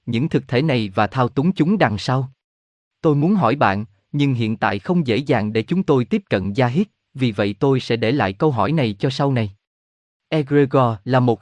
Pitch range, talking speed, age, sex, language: 110-155 Hz, 220 wpm, 20-39, male, Vietnamese